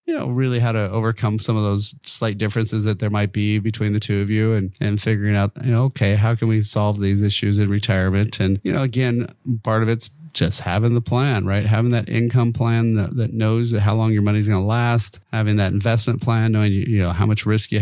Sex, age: male, 30-49